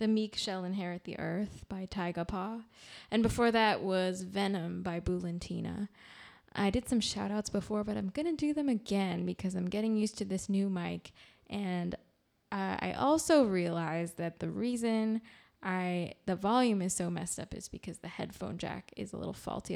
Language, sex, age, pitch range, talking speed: English, female, 20-39, 175-210 Hz, 180 wpm